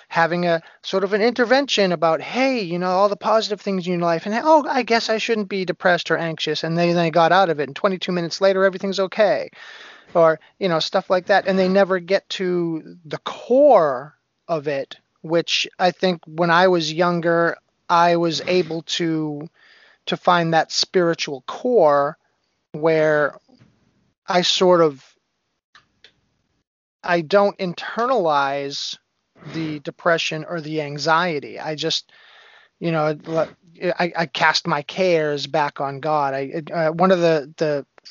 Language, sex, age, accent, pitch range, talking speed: English, male, 30-49, American, 155-195 Hz, 160 wpm